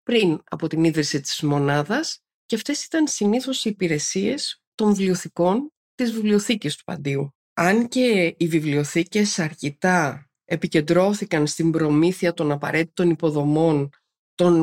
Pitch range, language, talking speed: 150-210 Hz, Greek, 125 wpm